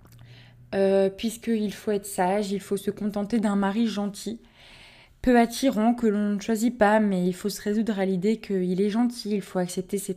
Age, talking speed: 20-39, 195 wpm